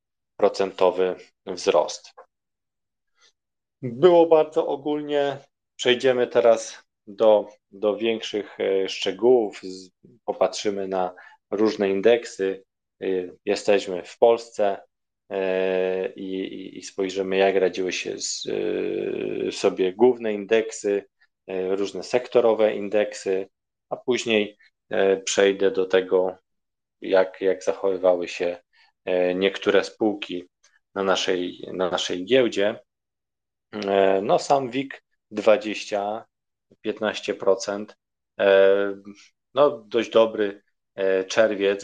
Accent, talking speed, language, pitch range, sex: native, 80 wpm, Polish, 95-115 Hz, male